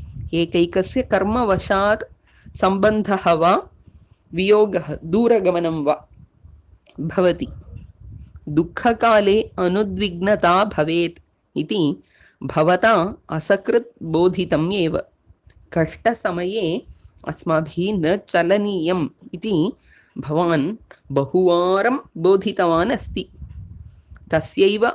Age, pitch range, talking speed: 20-39, 155-210 Hz, 70 wpm